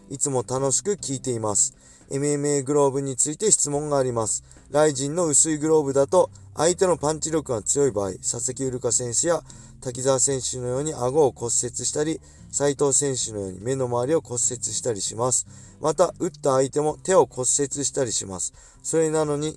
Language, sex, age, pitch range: Japanese, male, 20-39, 110-145 Hz